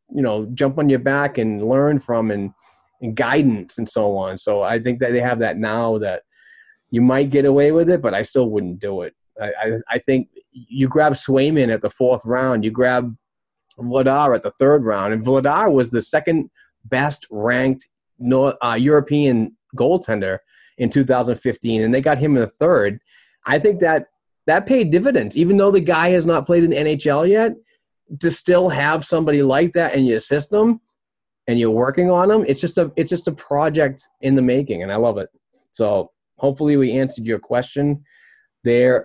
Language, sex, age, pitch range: English, male, 30-49, 125-165 Hz